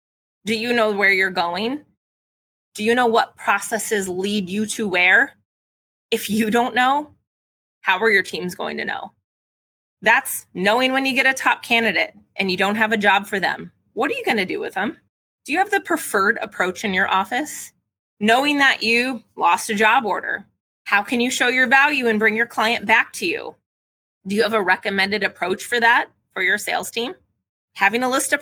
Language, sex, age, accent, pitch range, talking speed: English, female, 20-39, American, 195-255 Hz, 200 wpm